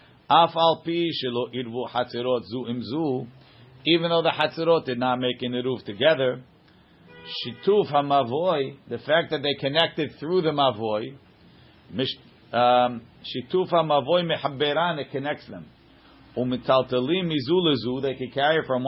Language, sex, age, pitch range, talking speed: English, male, 50-69, 125-160 Hz, 90 wpm